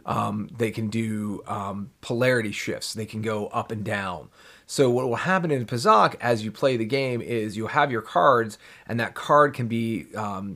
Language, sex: English, male